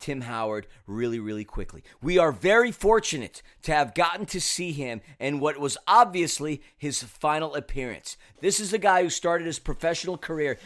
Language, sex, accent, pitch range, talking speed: English, male, American, 145-195 Hz, 175 wpm